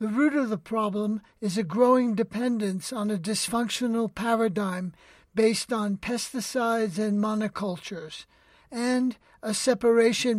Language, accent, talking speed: English, American, 120 wpm